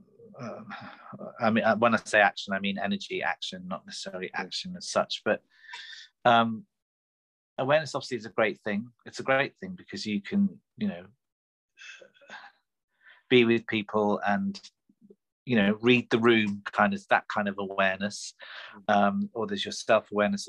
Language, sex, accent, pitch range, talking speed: English, male, British, 100-135 Hz, 150 wpm